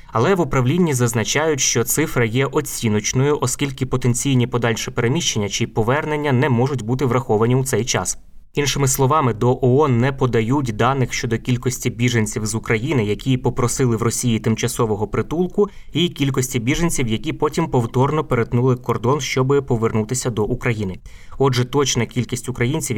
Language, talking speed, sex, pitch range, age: Ukrainian, 145 wpm, male, 110-130 Hz, 20-39